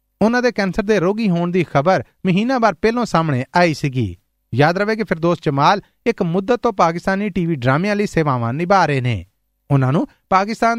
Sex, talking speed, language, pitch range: male, 185 wpm, Punjabi, 150-210 Hz